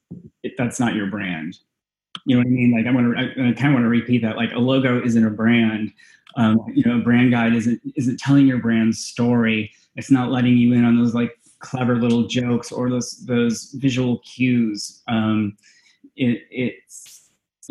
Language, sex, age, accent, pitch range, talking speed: English, male, 20-39, American, 105-120 Hz, 195 wpm